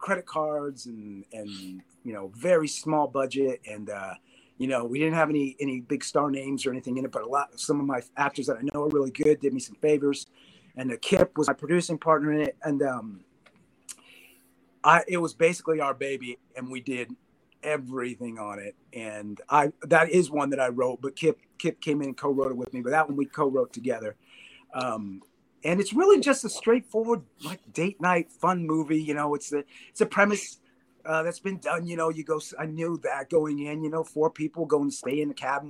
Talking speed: 220 wpm